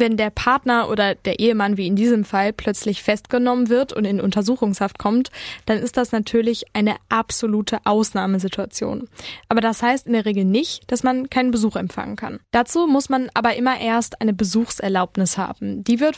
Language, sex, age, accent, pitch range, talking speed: German, female, 10-29, German, 200-245 Hz, 180 wpm